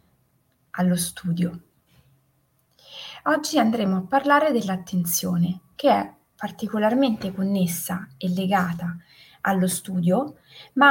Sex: female